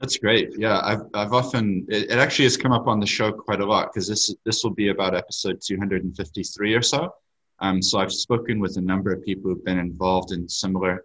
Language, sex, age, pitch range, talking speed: English, male, 20-39, 90-110 Hz, 230 wpm